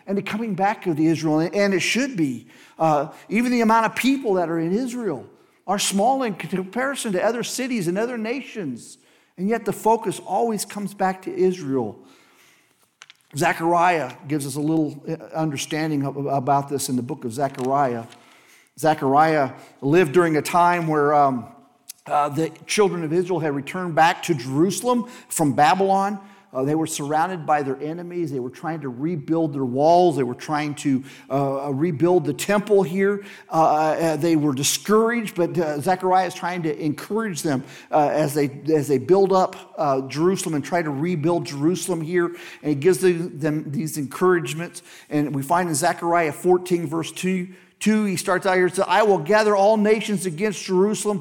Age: 50-69